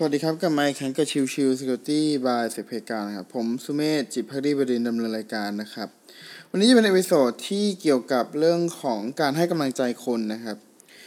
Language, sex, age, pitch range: Thai, male, 20-39, 125-170 Hz